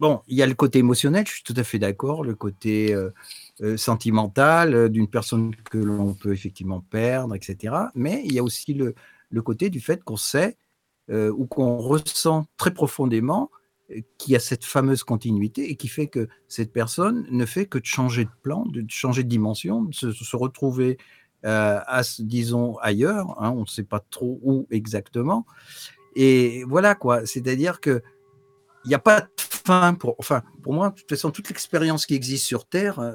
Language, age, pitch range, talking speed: French, 50-69, 115-150 Hz, 190 wpm